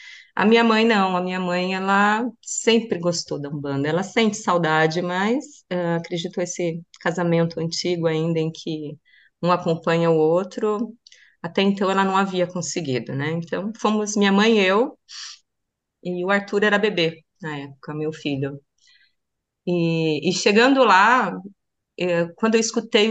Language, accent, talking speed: Portuguese, Brazilian, 150 wpm